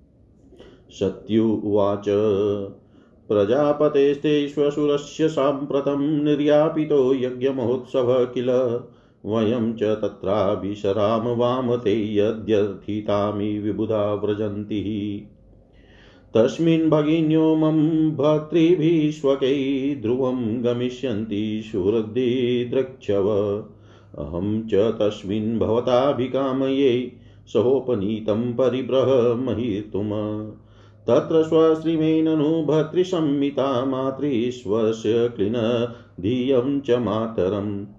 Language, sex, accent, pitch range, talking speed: Hindi, male, native, 105-135 Hz, 50 wpm